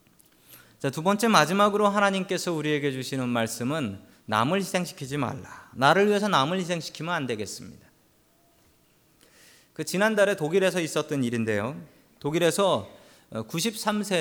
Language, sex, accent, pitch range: Korean, male, native, 130-195 Hz